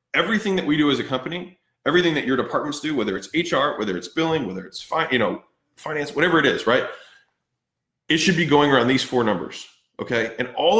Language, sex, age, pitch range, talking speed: English, male, 20-39, 125-165 Hz, 215 wpm